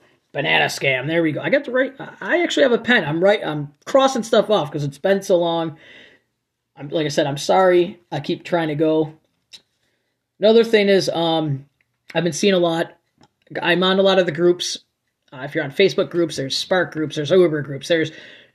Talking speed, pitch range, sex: 210 wpm, 150-185 Hz, male